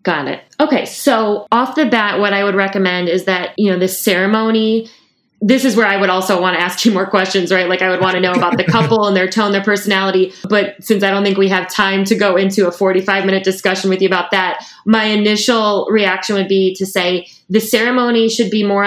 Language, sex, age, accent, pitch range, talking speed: English, female, 20-39, American, 185-210 Hz, 240 wpm